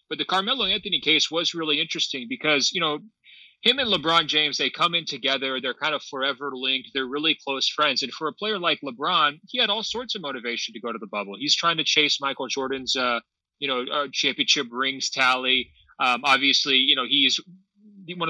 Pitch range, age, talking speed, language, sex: 135-165 Hz, 30-49, 205 wpm, English, male